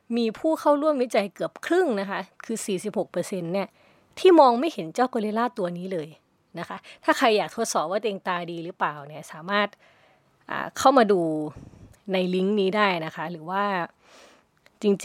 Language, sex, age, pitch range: Thai, female, 20-39, 175-225 Hz